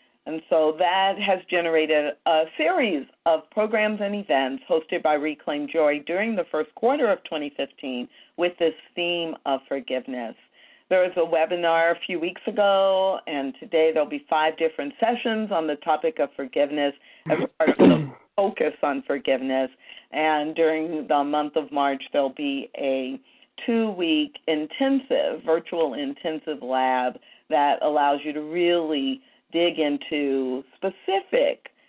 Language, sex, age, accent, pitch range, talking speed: English, female, 50-69, American, 150-215 Hz, 145 wpm